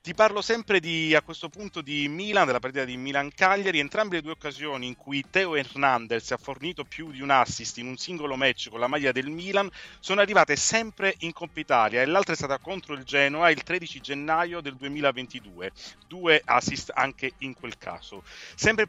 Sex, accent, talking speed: male, native, 195 wpm